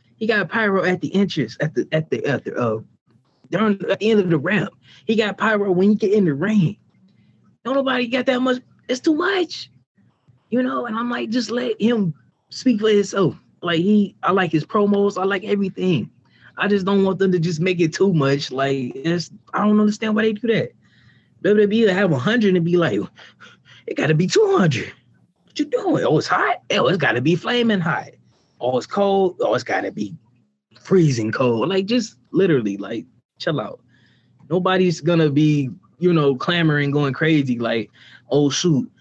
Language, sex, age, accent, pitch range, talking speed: English, male, 20-39, American, 135-195 Hz, 195 wpm